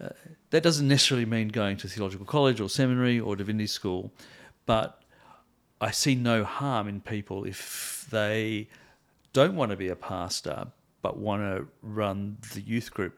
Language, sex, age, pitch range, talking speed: English, male, 50-69, 95-120 Hz, 165 wpm